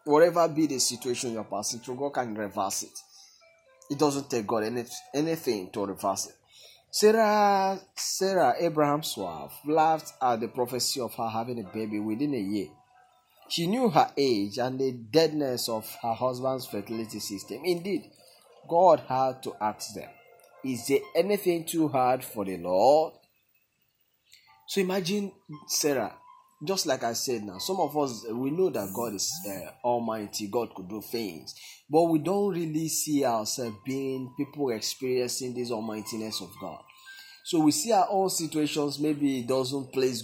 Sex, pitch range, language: male, 120-170 Hz, English